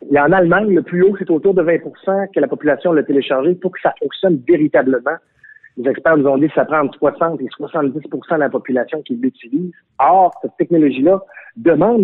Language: French